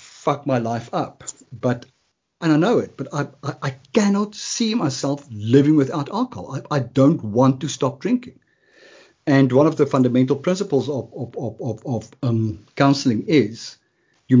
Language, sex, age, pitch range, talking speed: English, male, 50-69, 125-155 Hz, 165 wpm